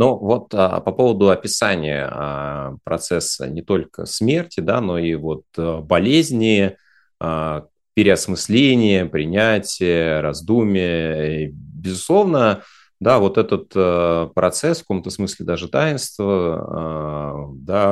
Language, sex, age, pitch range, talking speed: Russian, male, 30-49, 80-105 Hz, 85 wpm